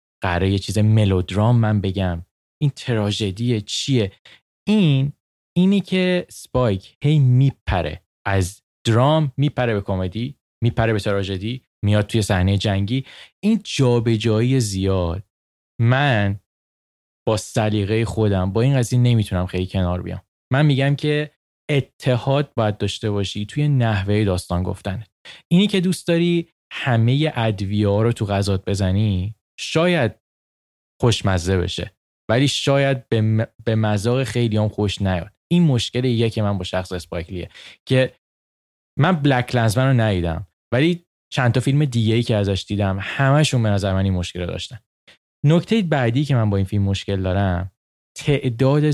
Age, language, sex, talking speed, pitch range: 20-39, Persian, male, 140 wpm, 95-135 Hz